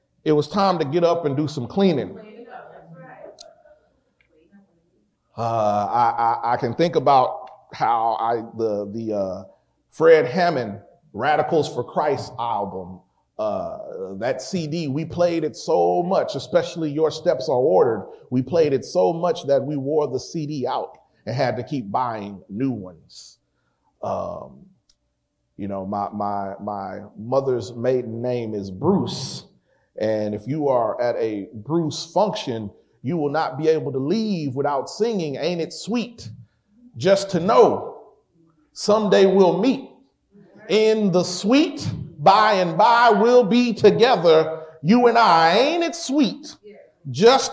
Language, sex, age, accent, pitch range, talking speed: English, male, 30-49, American, 120-200 Hz, 140 wpm